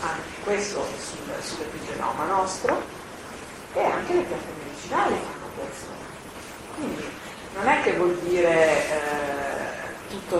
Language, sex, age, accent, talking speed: Italian, female, 40-59, native, 120 wpm